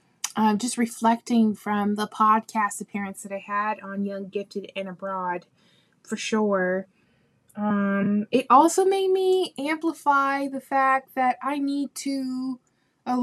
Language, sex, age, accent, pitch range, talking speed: English, female, 20-39, American, 205-240 Hz, 135 wpm